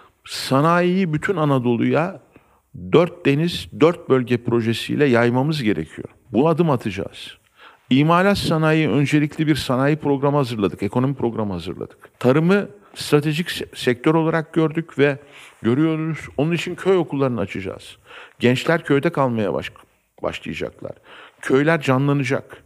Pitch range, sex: 130-180 Hz, male